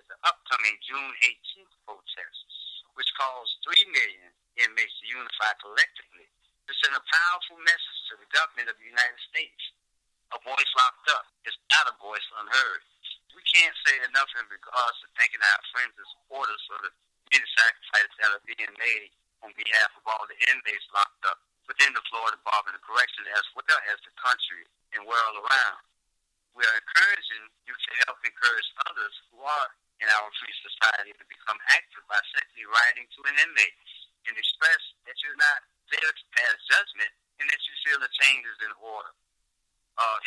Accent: American